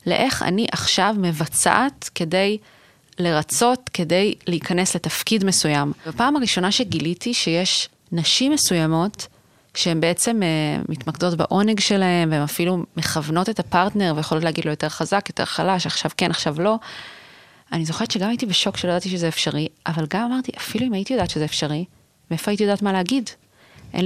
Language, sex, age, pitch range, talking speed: Hebrew, female, 30-49, 165-200 Hz, 150 wpm